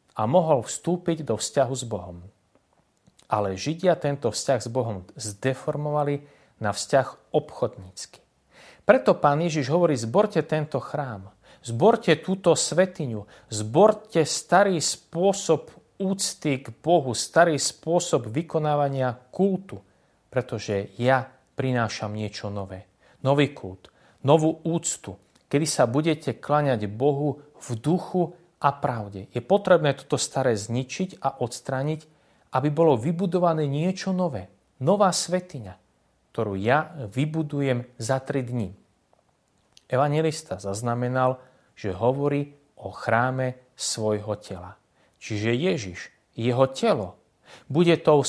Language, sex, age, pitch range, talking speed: Slovak, male, 40-59, 115-160 Hz, 110 wpm